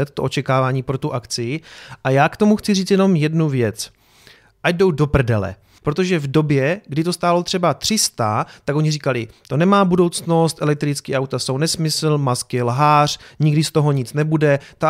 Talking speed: 175 wpm